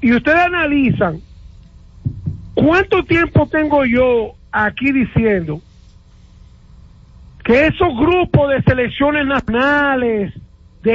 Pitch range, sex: 235-305 Hz, male